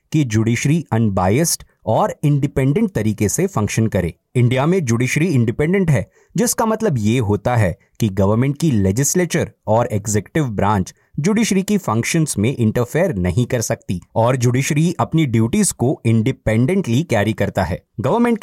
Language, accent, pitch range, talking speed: Hindi, native, 105-155 Hz, 70 wpm